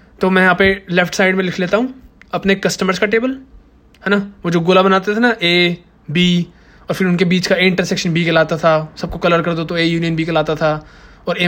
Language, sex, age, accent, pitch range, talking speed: Hindi, male, 20-39, native, 165-200 Hz, 240 wpm